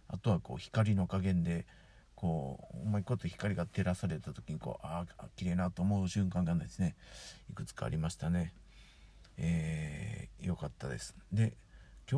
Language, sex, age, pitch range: Japanese, male, 50-69, 90-120 Hz